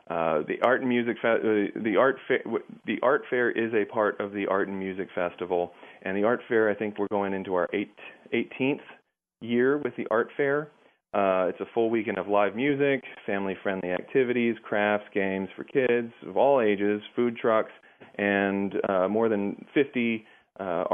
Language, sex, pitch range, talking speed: English, male, 95-110 Hz, 180 wpm